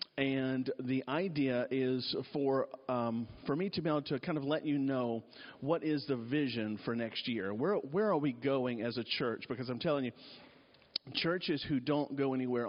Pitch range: 110-135 Hz